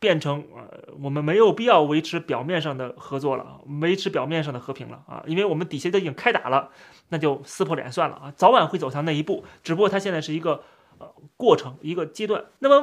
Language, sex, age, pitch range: Chinese, male, 30-49, 145-190 Hz